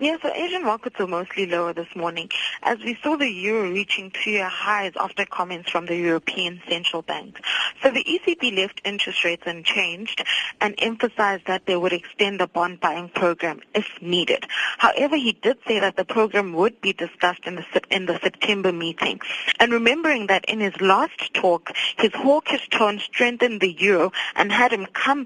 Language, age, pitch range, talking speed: English, 20-39, 180-225 Hz, 185 wpm